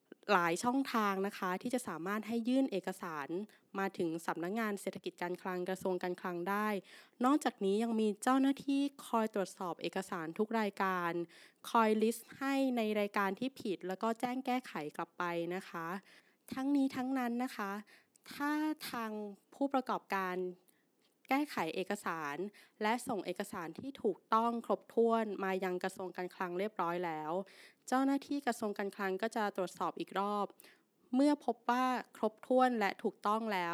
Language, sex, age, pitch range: Thai, female, 20-39, 185-235 Hz